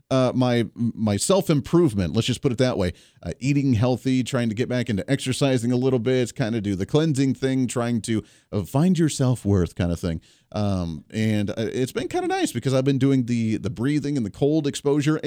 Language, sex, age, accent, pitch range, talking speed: English, male, 30-49, American, 125-170 Hz, 215 wpm